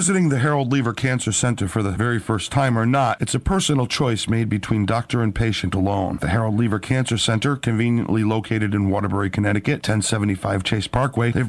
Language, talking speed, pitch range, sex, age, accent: English, 195 wpm, 100-125 Hz, male, 50-69, American